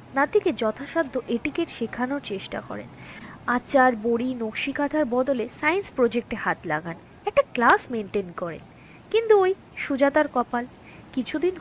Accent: native